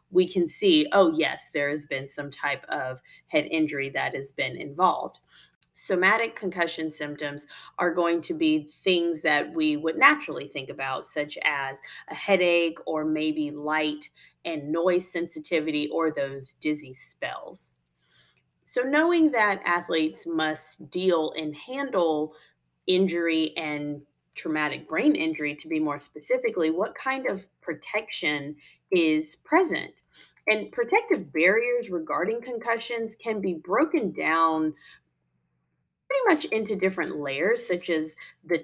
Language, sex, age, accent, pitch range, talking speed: English, female, 30-49, American, 150-210 Hz, 130 wpm